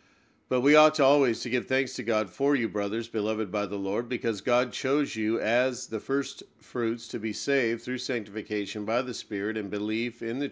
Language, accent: English, American